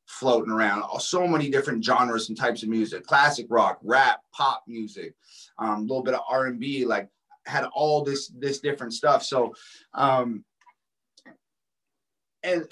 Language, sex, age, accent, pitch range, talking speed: English, male, 30-49, American, 120-150 Hz, 145 wpm